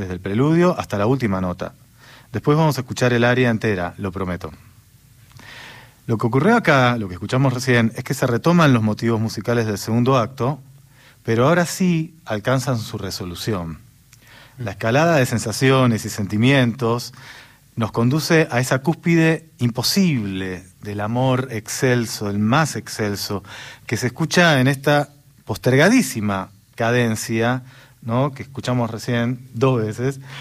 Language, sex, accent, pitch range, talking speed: Spanish, male, Argentinian, 110-135 Hz, 140 wpm